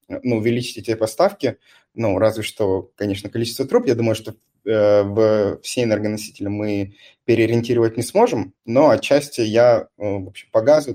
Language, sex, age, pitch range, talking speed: Russian, male, 20-39, 105-125 Hz, 155 wpm